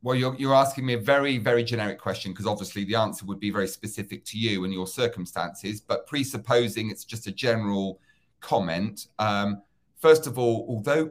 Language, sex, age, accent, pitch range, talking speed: English, male, 40-59, British, 100-125 Hz, 190 wpm